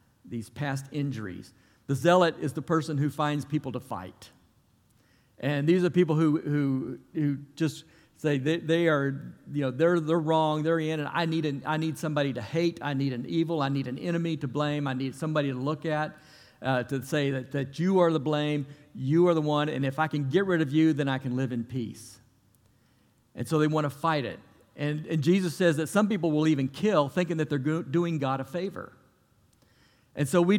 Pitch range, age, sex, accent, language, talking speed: 130-160 Hz, 50-69, male, American, English, 220 wpm